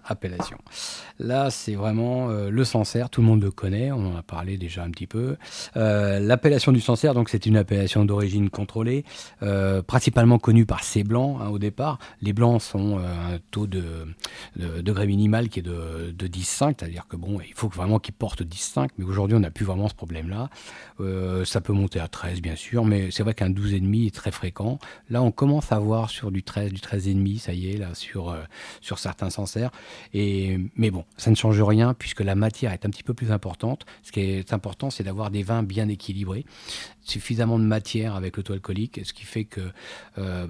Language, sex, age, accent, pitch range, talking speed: French, male, 40-59, French, 95-110 Hz, 210 wpm